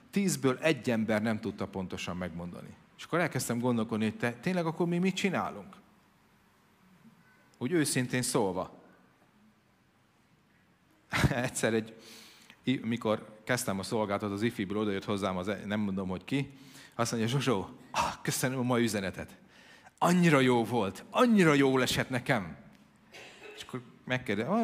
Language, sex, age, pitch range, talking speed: Hungarian, male, 40-59, 105-135 Hz, 130 wpm